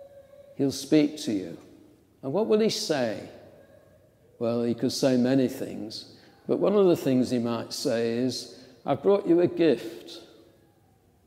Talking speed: 155 wpm